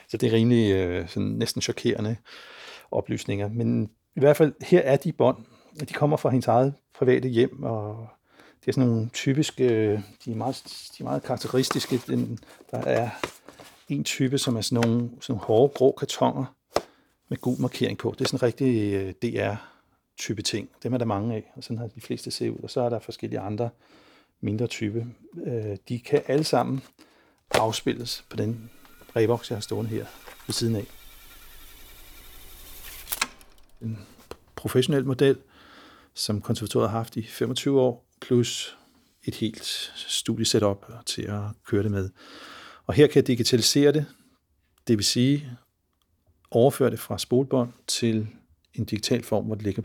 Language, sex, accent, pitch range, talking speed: Danish, male, native, 105-130 Hz, 160 wpm